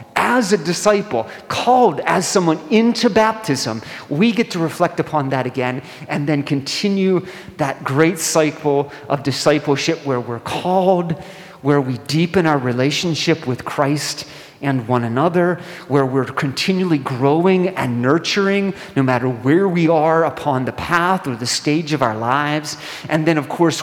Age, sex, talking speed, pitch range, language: 40-59, male, 150 wpm, 125-165 Hz, English